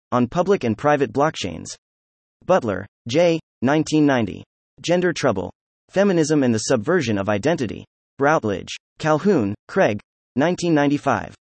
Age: 30-49